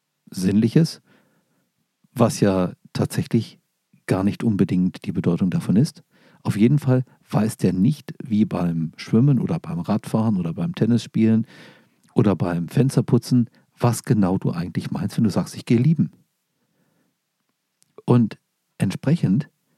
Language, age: German, 50-69